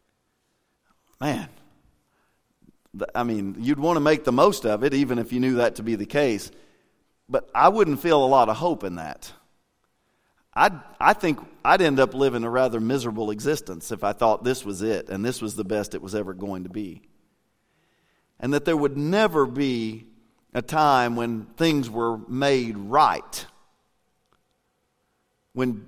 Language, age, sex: English, 40-59, male